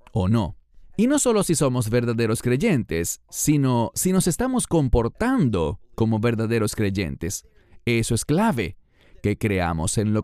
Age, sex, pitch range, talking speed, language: 40-59, male, 90-145 Hz, 140 wpm, English